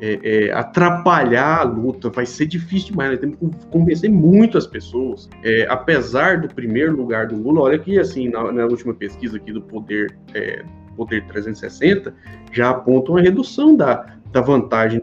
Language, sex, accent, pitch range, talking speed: Portuguese, male, Brazilian, 115-175 Hz, 170 wpm